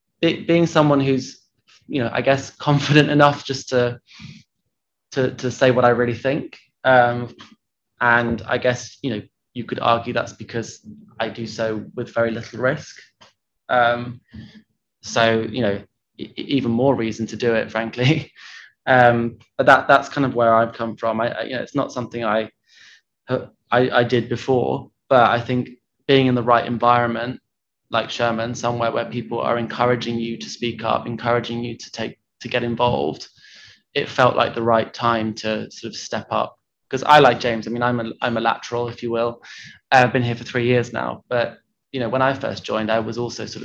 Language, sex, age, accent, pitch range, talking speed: English, male, 20-39, British, 115-130 Hz, 190 wpm